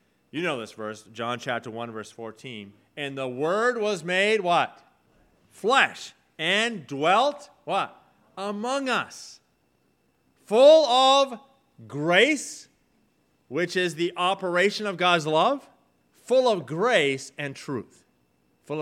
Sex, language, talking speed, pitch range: male, English, 120 wpm, 110-175 Hz